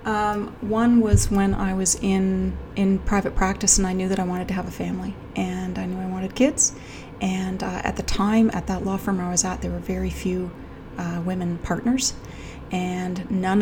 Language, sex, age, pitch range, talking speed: English, female, 30-49, 180-200 Hz, 205 wpm